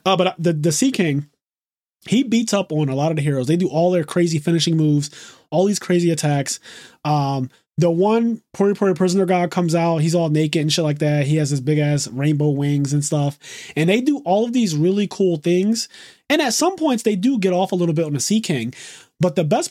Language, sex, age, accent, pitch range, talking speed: English, male, 20-39, American, 150-200 Hz, 230 wpm